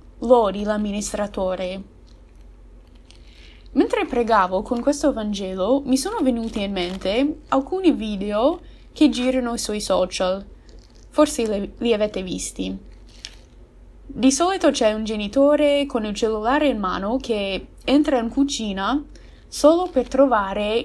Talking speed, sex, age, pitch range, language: 115 wpm, female, 20-39, 200-265 Hz, Italian